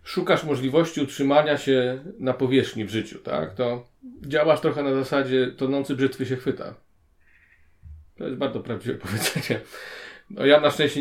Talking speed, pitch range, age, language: 145 wpm, 120-145 Hz, 40-59, Polish